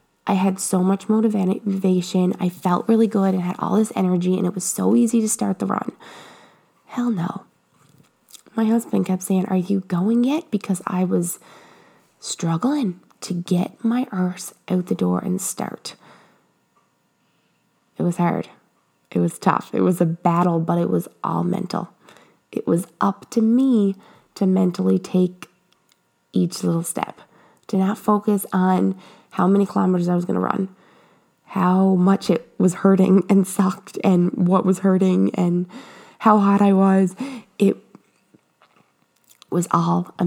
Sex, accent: female, American